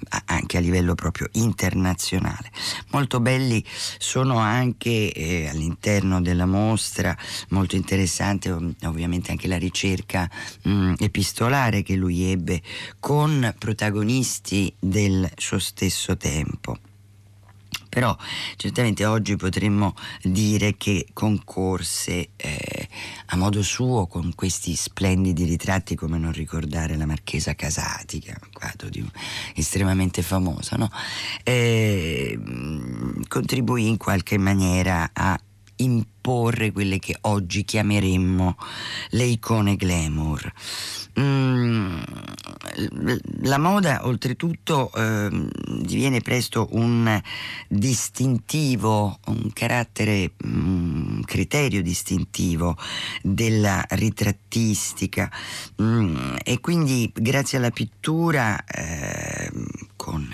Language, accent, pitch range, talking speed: Italian, native, 90-115 Hz, 90 wpm